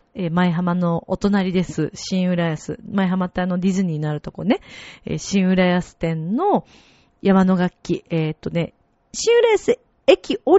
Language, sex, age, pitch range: Japanese, female, 40-59, 170-265 Hz